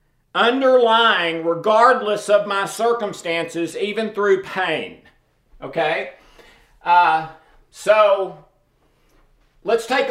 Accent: American